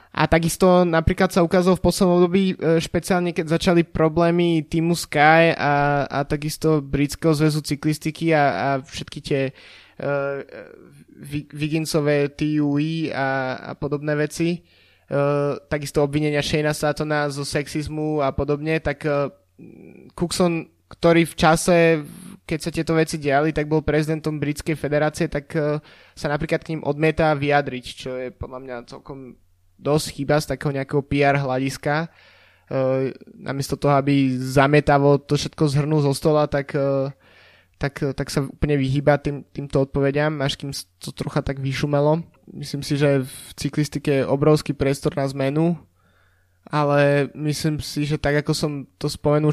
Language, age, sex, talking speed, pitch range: Slovak, 20-39, male, 150 wpm, 140-155 Hz